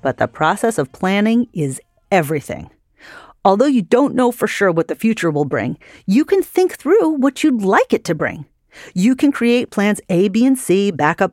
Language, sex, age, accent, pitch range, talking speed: English, female, 40-59, American, 165-255 Hz, 195 wpm